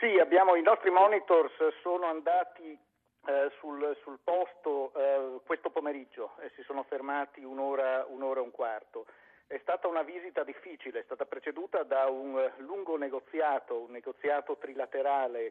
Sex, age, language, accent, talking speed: male, 50-69, Italian, native, 145 wpm